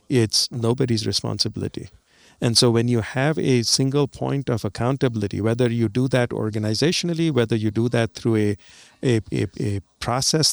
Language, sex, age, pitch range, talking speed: English, male, 50-69, 110-130 Hz, 160 wpm